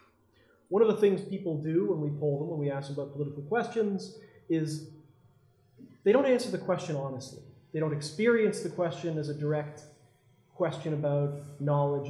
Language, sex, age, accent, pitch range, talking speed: English, male, 30-49, American, 135-170 Hz, 175 wpm